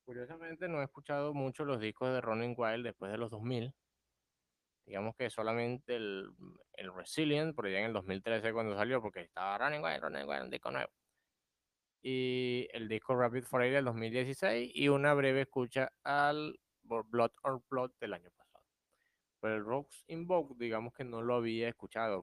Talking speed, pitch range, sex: 175 wpm, 100-130 Hz, male